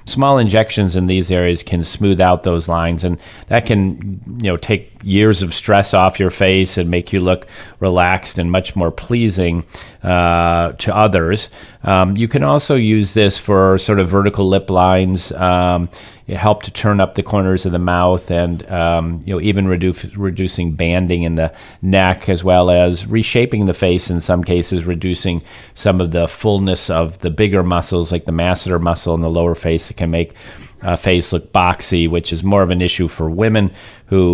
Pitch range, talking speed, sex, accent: 85-100 Hz, 185 wpm, male, American